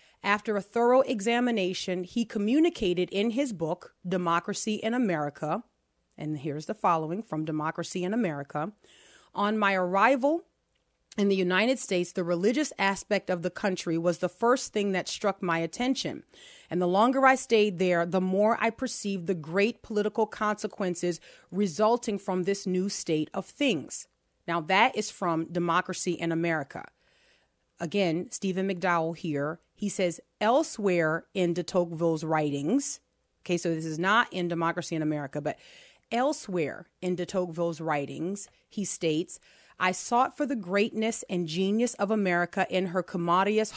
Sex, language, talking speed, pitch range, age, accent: female, English, 150 wpm, 175-215 Hz, 30-49, American